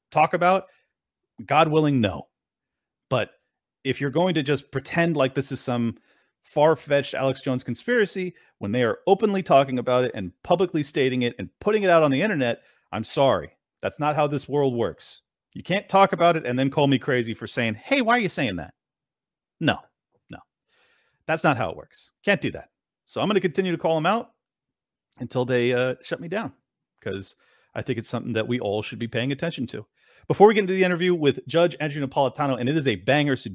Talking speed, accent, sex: 210 wpm, American, male